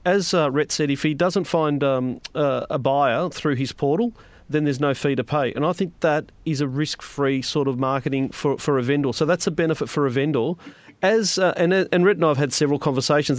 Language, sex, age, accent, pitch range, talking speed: English, male, 40-59, Australian, 140-165 Hz, 240 wpm